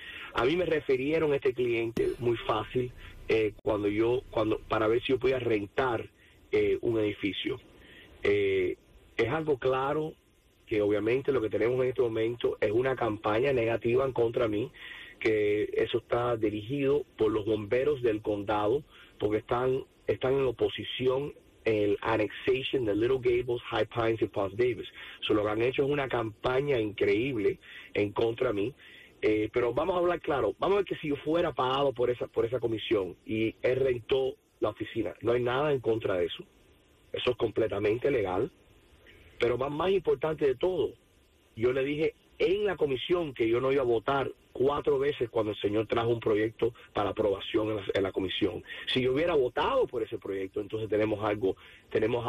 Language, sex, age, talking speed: English, male, 30-49, 180 wpm